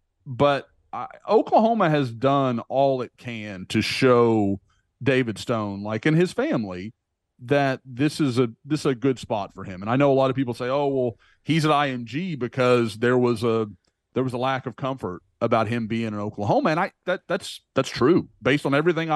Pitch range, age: 110-145 Hz, 40-59